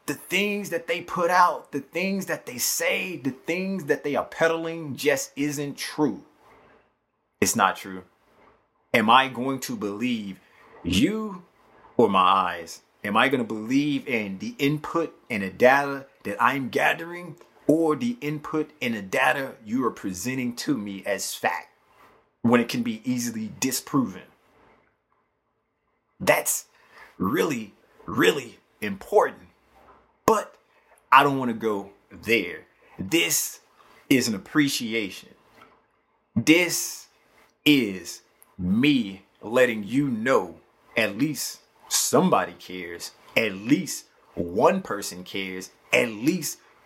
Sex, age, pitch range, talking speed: male, 30-49, 120-180 Hz, 125 wpm